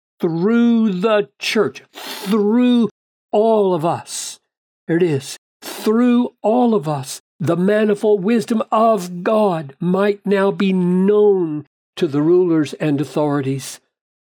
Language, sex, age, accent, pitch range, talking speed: English, male, 60-79, American, 160-205 Hz, 115 wpm